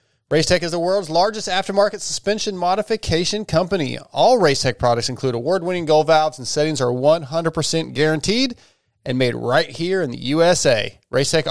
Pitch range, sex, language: 130-165 Hz, male, English